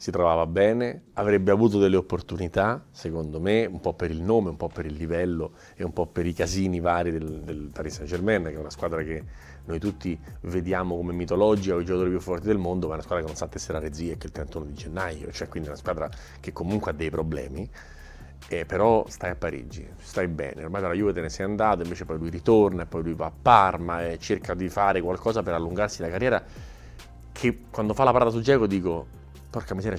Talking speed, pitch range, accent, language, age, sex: 230 wpm, 80-100 Hz, native, Italian, 30-49, male